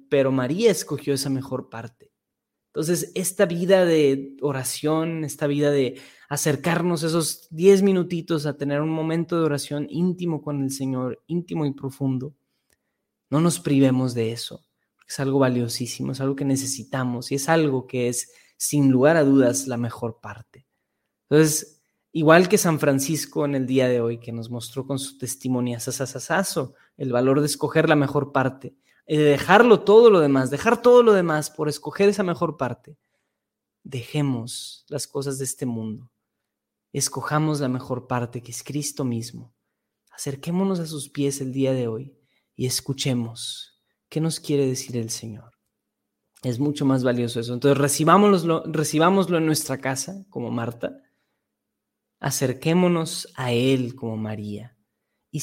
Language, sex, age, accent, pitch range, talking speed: Spanish, male, 20-39, Mexican, 125-155 Hz, 155 wpm